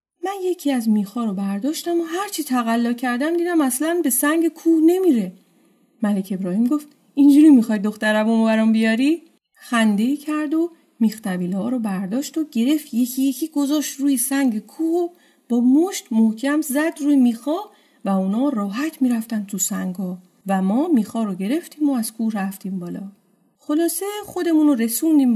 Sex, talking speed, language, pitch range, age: female, 155 wpm, Persian, 200-300 Hz, 30-49